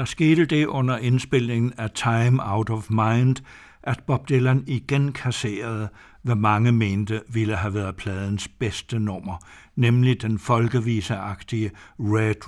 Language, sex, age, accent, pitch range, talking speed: Danish, male, 60-79, German, 110-130 Hz, 135 wpm